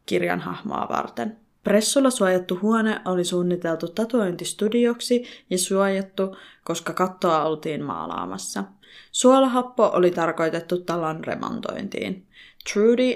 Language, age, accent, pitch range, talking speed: Finnish, 20-39, native, 175-210 Hz, 95 wpm